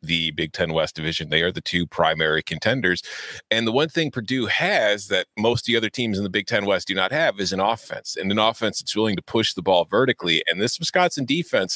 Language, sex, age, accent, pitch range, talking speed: English, male, 30-49, American, 85-130 Hz, 245 wpm